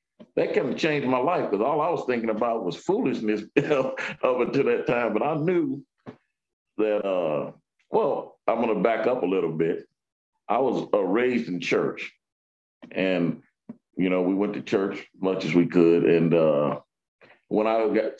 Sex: male